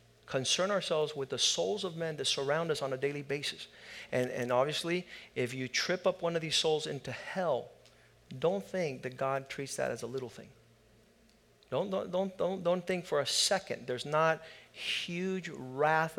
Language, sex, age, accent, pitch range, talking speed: English, male, 50-69, American, 140-180 Hz, 180 wpm